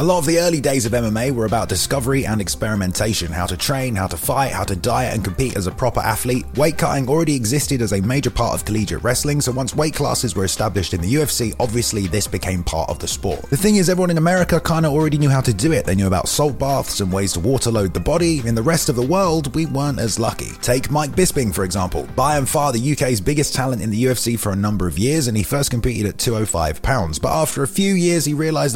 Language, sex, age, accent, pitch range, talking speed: English, male, 30-49, British, 100-140 Hz, 260 wpm